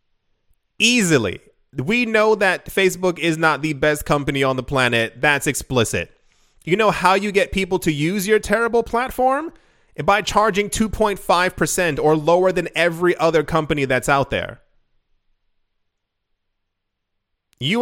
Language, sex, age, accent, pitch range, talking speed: English, male, 30-49, American, 140-195 Hz, 130 wpm